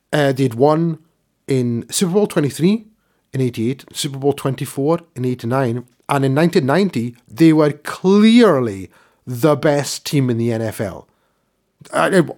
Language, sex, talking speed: English, male, 130 wpm